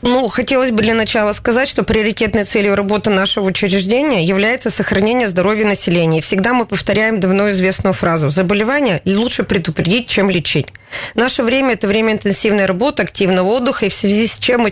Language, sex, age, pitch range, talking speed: Russian, female, 20-39, 185-225 Hz, 165 wpm